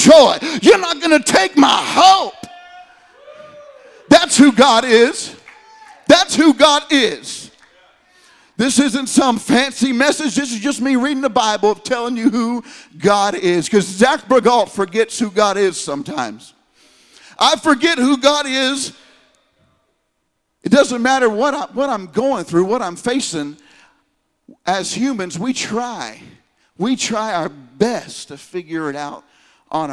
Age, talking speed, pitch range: 50-69, 145 wpm, 190-285 Hz